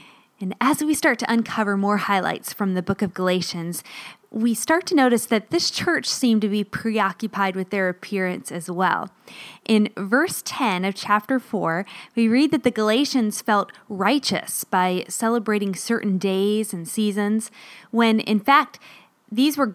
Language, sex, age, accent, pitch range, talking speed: English, female, 20-39, American, 190-240 Hz, 160 wpm